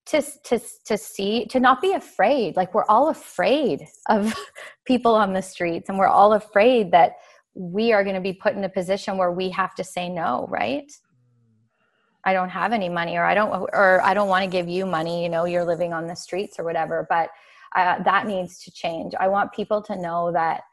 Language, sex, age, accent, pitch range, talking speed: English, female, 20-39, American, 170-215 Hz, 215 wpm